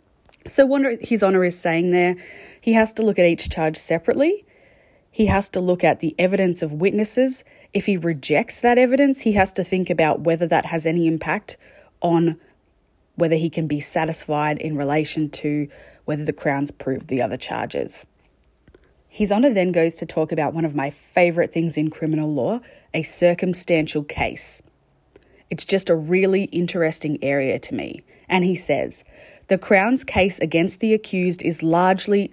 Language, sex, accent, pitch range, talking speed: English, female, Australian, 160-195 Hz, 170 wpm